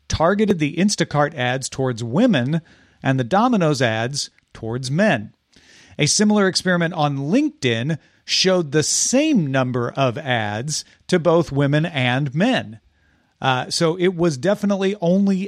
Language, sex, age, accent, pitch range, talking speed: English, male, 40-59, American, 140-195 Hz, 130 wpm